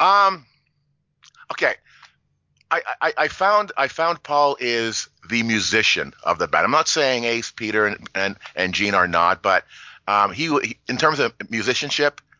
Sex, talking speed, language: male, 160 wpm, English